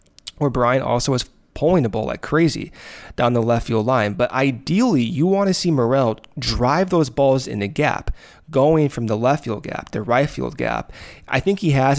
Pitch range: 110-140 Hz